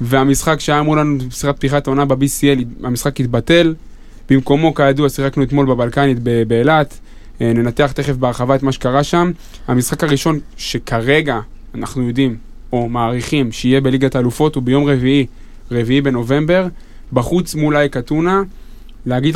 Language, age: Hebrew, 20-39